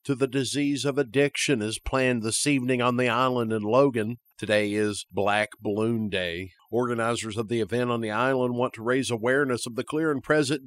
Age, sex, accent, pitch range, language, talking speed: 50-69, male, American, 105-125 Hz, English, 195 wpm